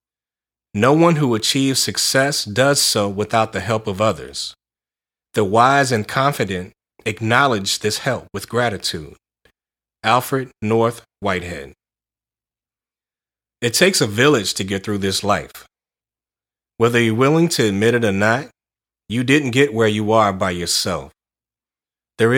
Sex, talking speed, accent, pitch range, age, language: male, 135 wpm, American, 105-135 Hz, 30-49, English